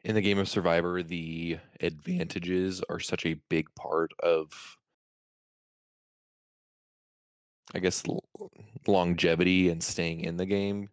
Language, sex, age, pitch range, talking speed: English, male, 20-39, 80-90 Hz, 120 wpm